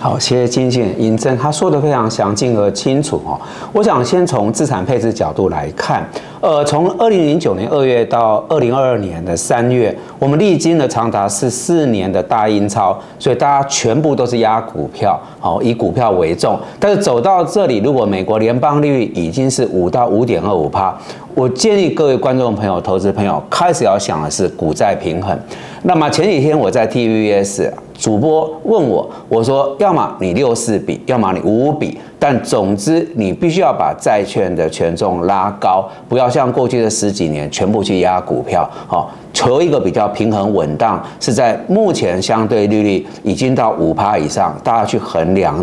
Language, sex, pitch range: Chinese, male, 105-150 Hz